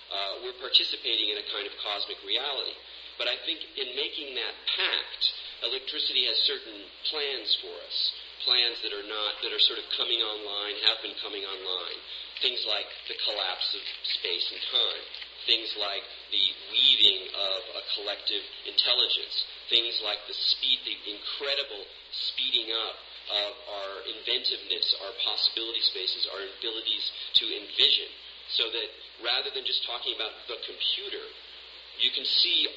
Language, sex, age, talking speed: English, male, 40-59, 150 wpm